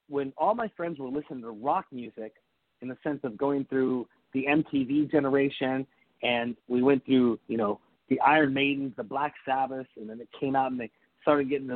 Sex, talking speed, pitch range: male, 200 wpm, 120-145 Hz